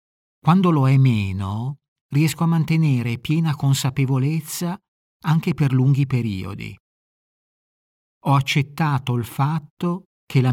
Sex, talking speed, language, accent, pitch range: male, 110 wpm, Italian, native, 110-145 Hz